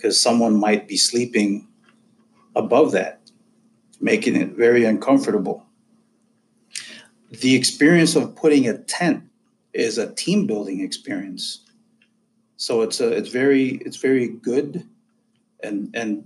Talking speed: 120 wpm